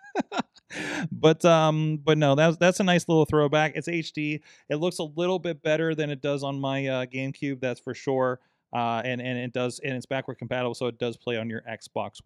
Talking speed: 215 wpm